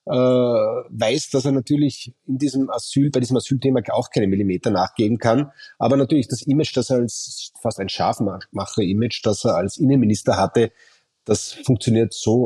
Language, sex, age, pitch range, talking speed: German, male, 30-49, 110-130 Hz, 160 wpm